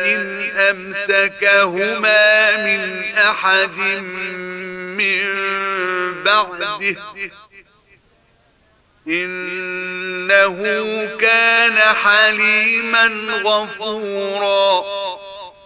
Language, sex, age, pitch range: Arabic, male, 50-69, 195-215 Hz